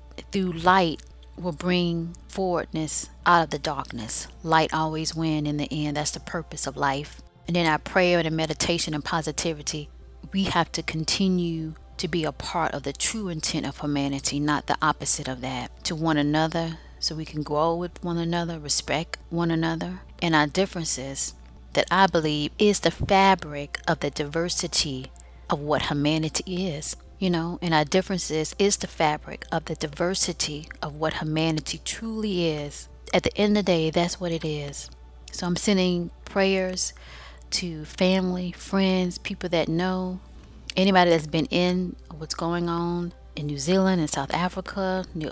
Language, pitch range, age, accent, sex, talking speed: English, 150-180 Hz, 30-49, American, female, 165 wpm